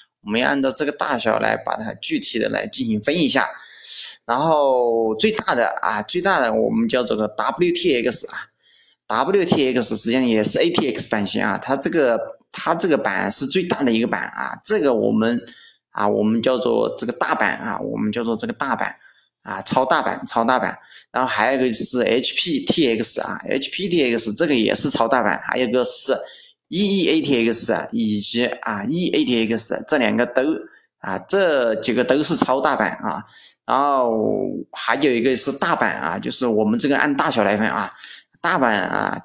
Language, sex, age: Chinese, male, 20-39